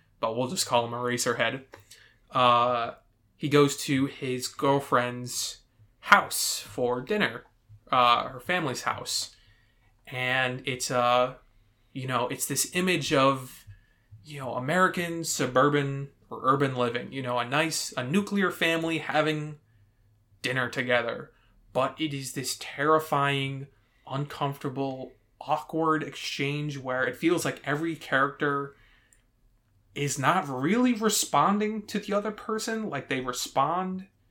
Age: 20-39